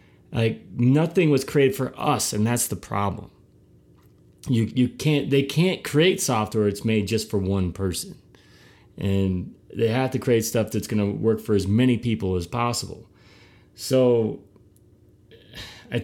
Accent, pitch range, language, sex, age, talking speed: American, 100-130 Hz, English, male, 30-49, 155 wpm